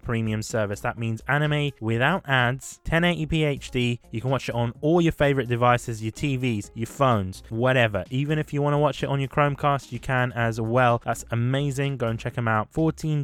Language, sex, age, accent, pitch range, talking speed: English, male, 20-39, British, 120-155 Hz, 205 wpm